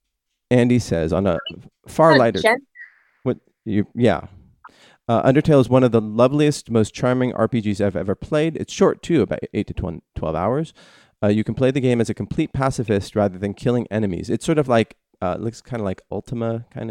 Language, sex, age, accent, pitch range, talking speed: English, male, 30-49, American, 95-125 Hz, 200 wpm